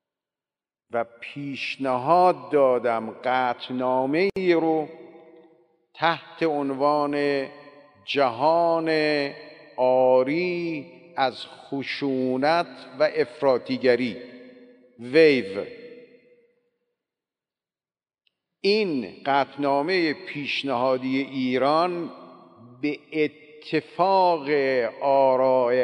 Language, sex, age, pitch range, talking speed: Persian, male, 50-69, 125-170 Hz, 50 wpm